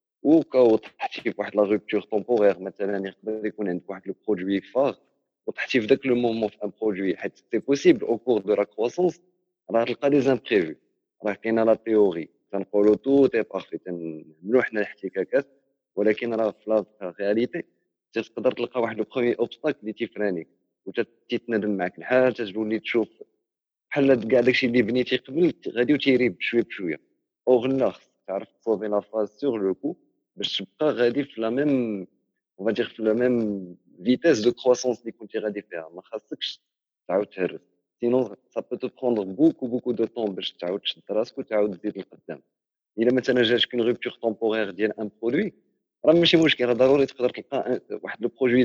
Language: Arabic